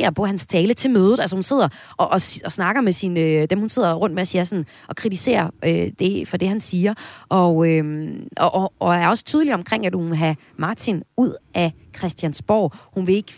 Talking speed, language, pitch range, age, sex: 225 wpm, Danish, 160-225 Hz, 30-49, female